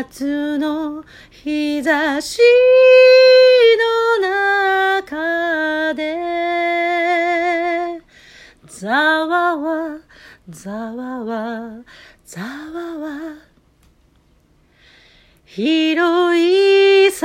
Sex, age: female, 40-59